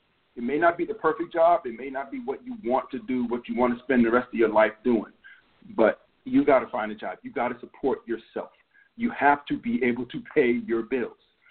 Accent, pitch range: American, 125-195 Hz